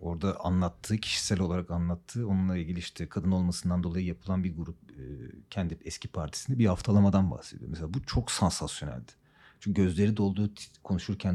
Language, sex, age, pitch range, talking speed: Turkish, male, 40-59, 90-115 Hz, 150 wpm